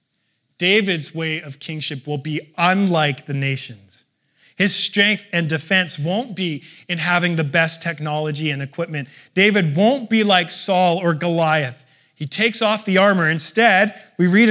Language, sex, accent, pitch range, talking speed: English, male, American, 160-215 Hz, 155 wpm